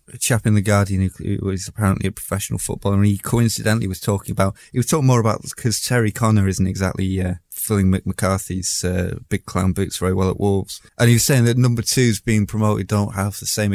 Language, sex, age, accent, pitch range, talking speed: English, male, 20-39, British, 95-115 Hz, 225 wpm